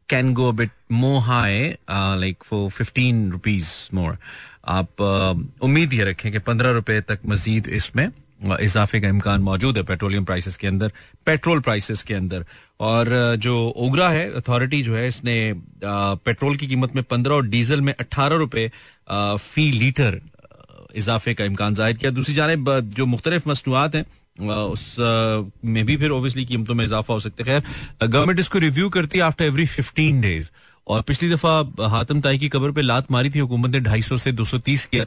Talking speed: 175 wpm